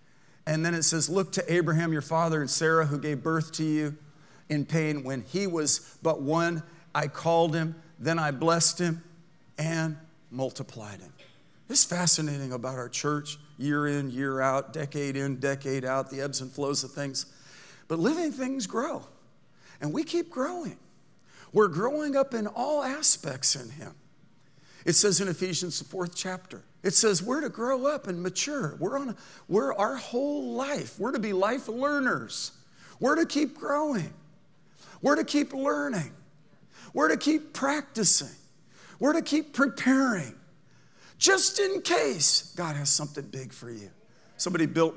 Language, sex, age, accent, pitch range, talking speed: English, male, 50-69, American, 145-210 Hz, 160 wpm